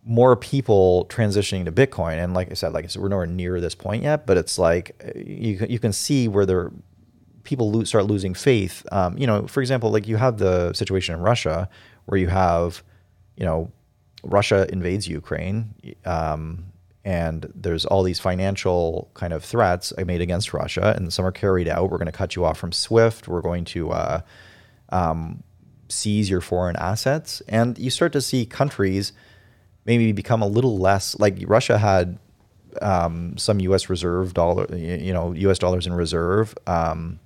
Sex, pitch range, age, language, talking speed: male, 90-110 Hz, 30-49, English, 180 wpm